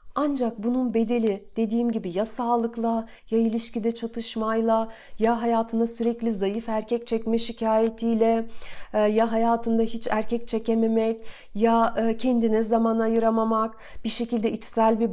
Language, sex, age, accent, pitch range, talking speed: Turkish, female, 40-59, native, 215-245 Hz, 120 wpm